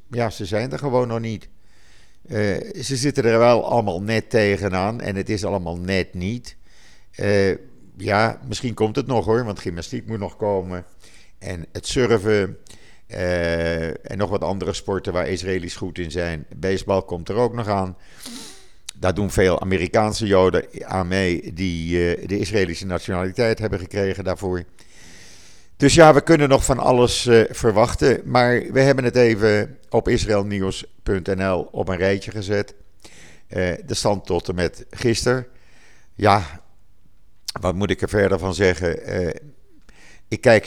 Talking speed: 155 wpm